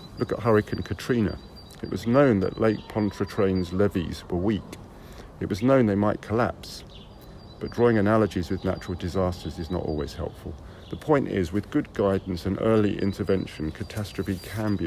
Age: 50-69